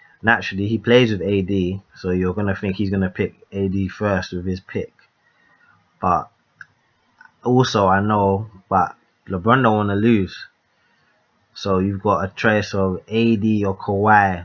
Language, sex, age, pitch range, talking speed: English, male, 20-39, 95-110 Hz, 160 wpm